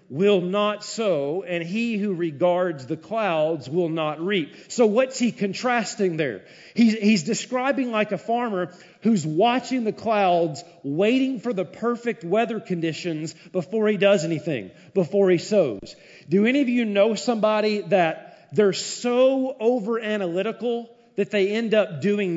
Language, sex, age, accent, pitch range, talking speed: English, male, 40-59, American, 195-255 Hz, 150 wpm